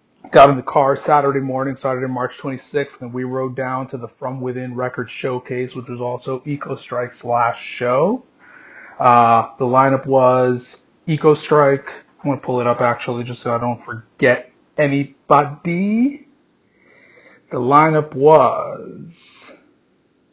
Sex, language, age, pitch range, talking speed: male, English, 30-49, 125-150 Hz, 135 wpm